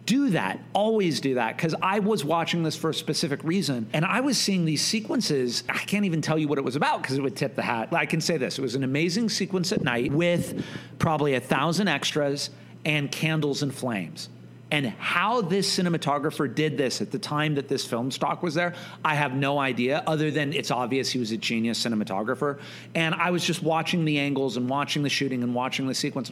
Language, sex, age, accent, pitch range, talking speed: English, male, 40-59, American, 135-175 Hz, 225 wpm